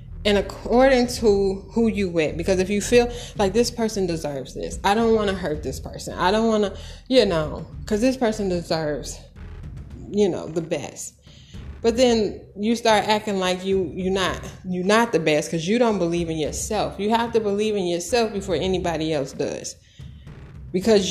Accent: American